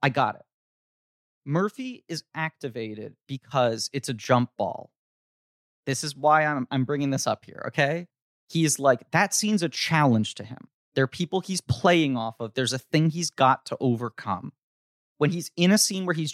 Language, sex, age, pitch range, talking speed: English, male, 30-49, 125-170 Hz, 185 wpm